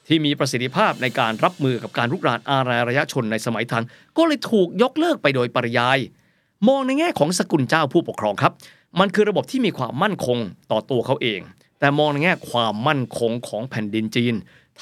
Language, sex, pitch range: Thai, male, 120-160 Hz